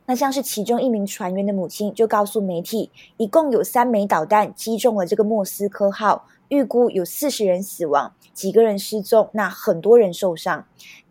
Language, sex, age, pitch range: Chinese, female, 20-39, 195-245 Hz